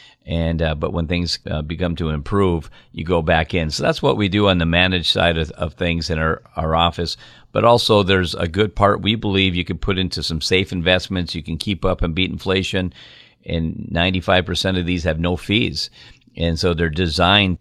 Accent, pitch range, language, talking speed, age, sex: American, 80-95 Hz, English, 210 wpm, 50-69, male